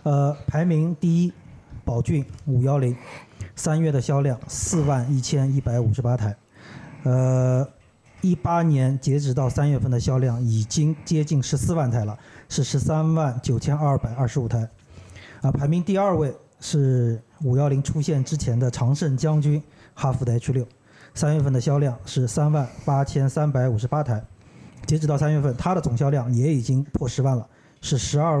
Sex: male